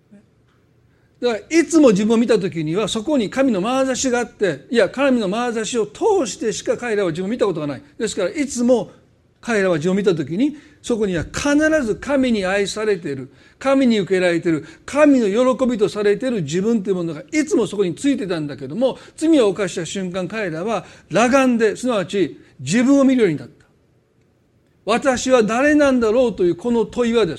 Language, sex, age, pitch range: Japanese, male, 40-59, 185-265 Hz